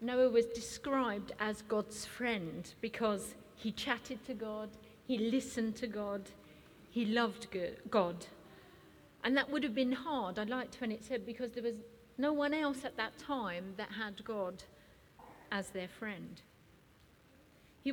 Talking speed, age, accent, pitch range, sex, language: 150 wpm, 40-59, British, 210-260 Hz, female, English